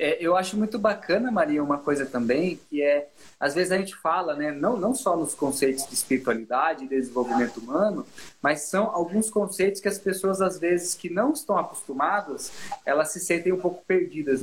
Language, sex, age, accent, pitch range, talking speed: Portuguese, male, 20-39, Brazilian, 150-210 Hz, 190 wpm